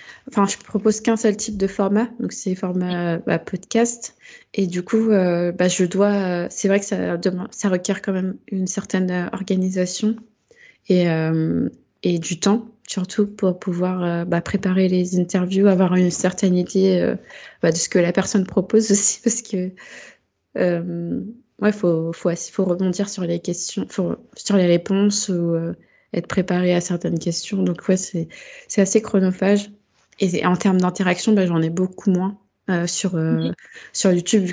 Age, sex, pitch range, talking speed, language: 20-39, female, 175-205 Hz, 180 wpm, French